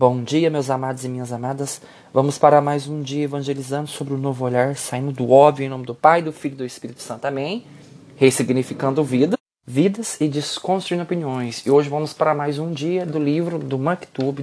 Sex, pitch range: male, 140-200 Hz